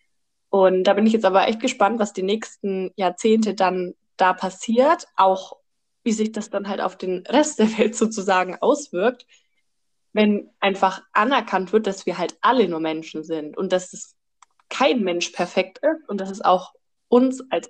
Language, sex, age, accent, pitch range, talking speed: German, female, 20-39, German, 190-240 Hz, 175 wpm